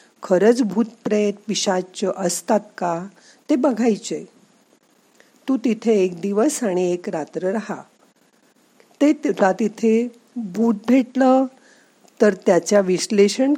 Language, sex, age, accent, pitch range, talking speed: Marathi, female, 50-69, native, 190-255 Hz, 95 wpm